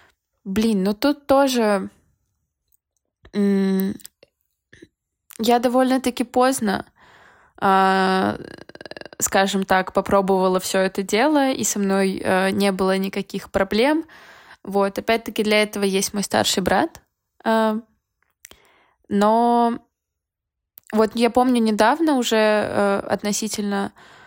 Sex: female